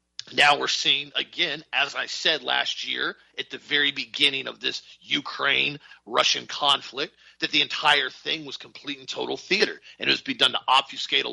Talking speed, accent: 185 wpm, American